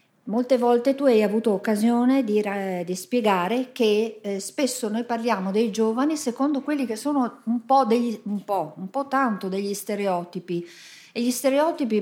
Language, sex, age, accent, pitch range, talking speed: Italian, female, 50-69, native, 180-230 Hz, 145 wpm